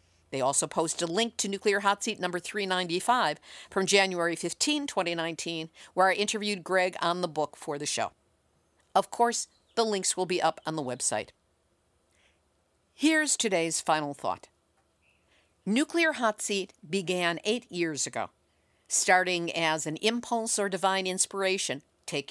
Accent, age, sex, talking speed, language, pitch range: American, 50-69, female, 145 wpm, English, 155-215 Hz